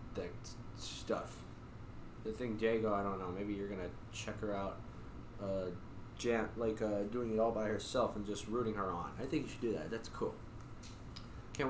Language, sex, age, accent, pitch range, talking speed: English, male, 20-39, American, 100-115 Hz, 185 wpm